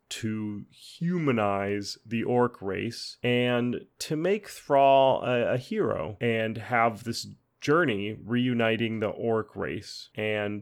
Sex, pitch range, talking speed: male, 105-125 Hz, 120 wpm